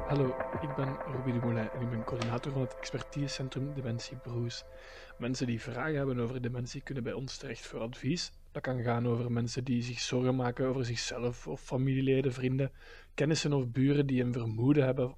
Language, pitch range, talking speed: Dutch, 125-140 Hz, 190 wpm